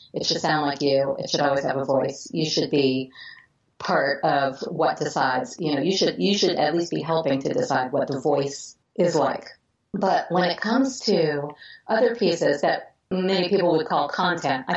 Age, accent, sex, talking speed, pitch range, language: 30-49, American, female, 200 wpm, 150-200 Hz, English